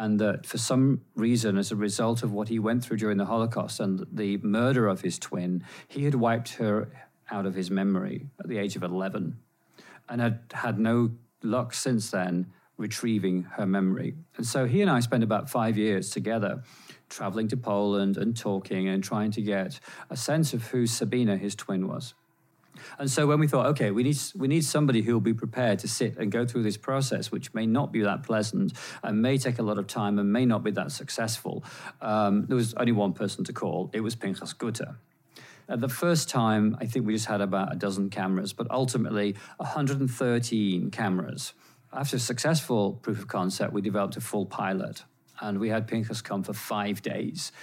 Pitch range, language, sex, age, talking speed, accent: 105-130 Hz, English, male, 40-59, 205 wpm, British